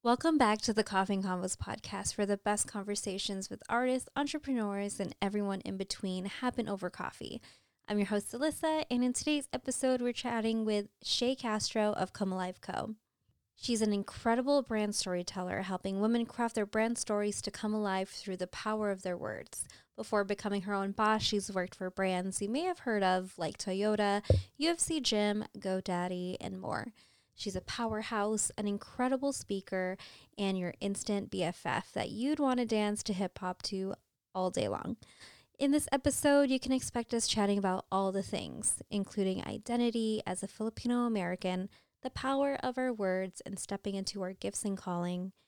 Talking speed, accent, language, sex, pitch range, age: 170 wpm, American, English, female, 190-235 Hz, 20-39